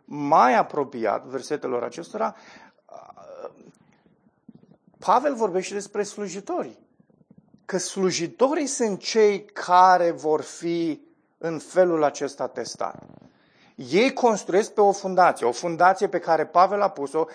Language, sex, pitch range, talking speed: Romanian, male, 150-195 Hz, 105 wpm